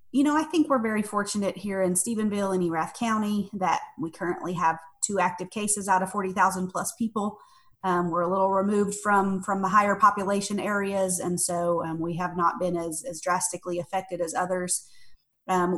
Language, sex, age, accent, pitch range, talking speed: English, female, 30-49, American, 180-205 Hz, 190 wpm